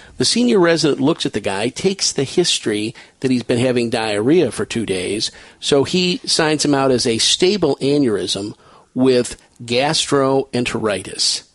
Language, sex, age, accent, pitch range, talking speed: English, male, 50-69, American, 125-165 Hz, 150 wpm